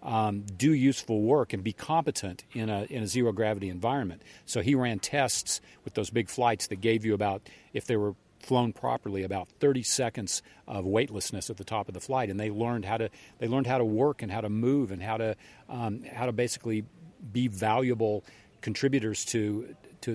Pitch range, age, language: 105-130 Hz, 50-69, English